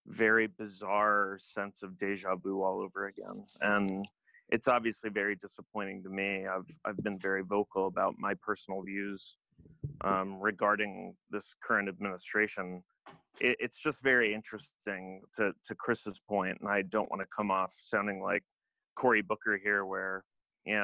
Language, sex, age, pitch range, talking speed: English, male, 30-49, 100-110 Hz, 150 wpm